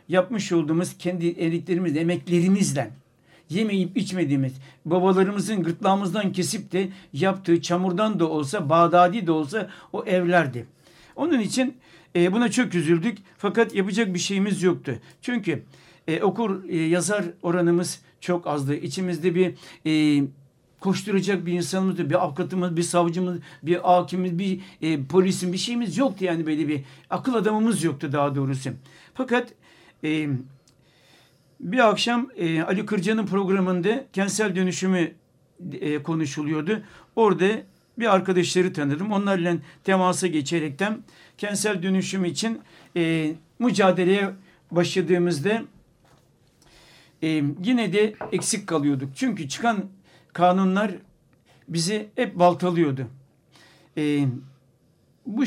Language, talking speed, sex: Turkish, 110 wpm, male